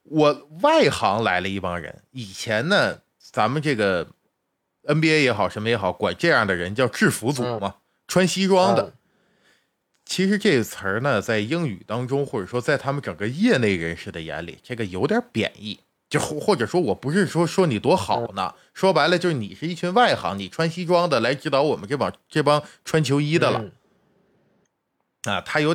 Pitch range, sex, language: 105-175 Hz, male, Chinese